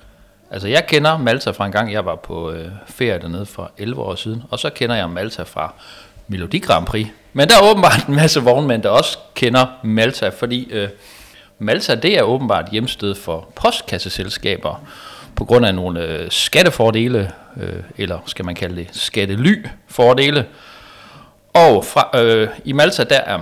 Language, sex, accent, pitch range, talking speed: Danish, male, native, 95-120 Hz, 155 wpm